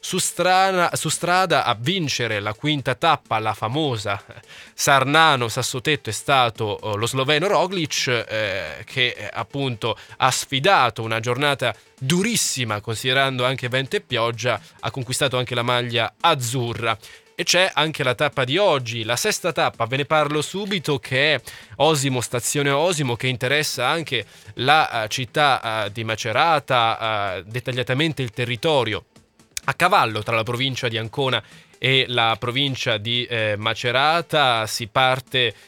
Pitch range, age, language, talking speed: 120-150 Hz, 20-39, Italian, 135 wpm